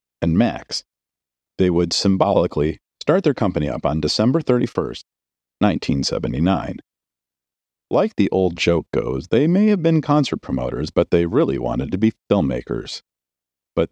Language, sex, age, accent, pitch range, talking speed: English, male, 40-59, American, 90-145 Hz, 140 wpm